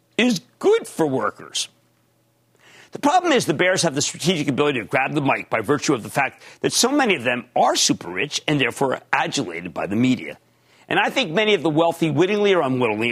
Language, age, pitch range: English, 50-69, 130-190 Hz